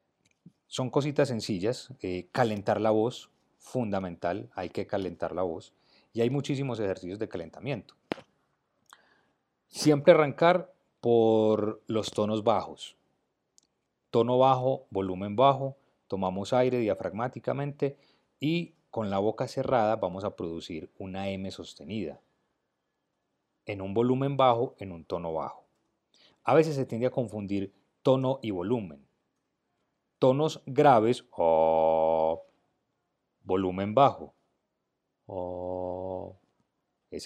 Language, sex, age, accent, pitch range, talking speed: Spanish, male, 40-59, Colombian, 95-130 Hz, 110 wpm